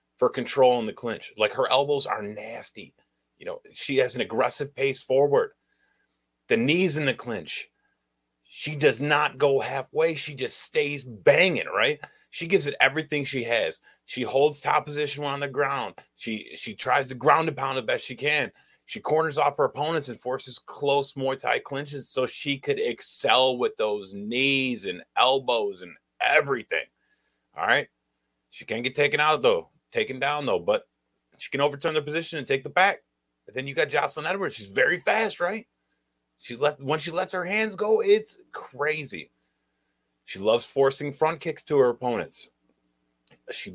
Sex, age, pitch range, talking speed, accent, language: male, 30-49, 115-155 Hz, 180 wpm, American, English